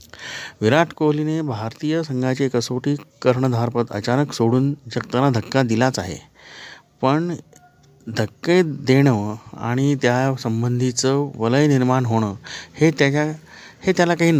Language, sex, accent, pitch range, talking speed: Marathi, male, native, 120-150 Hz, 115 wpm